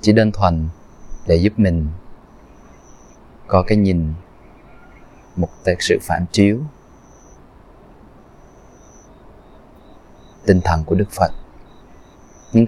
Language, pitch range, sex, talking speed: Vietnamese, 85-105 Hz, male, 90 wpm